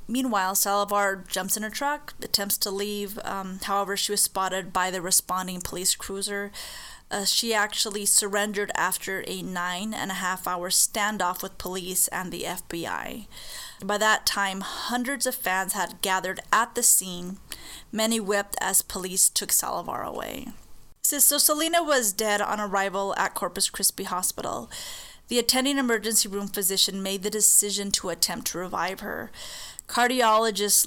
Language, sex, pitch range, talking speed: English, female, 190-215 Hz, 150 wpm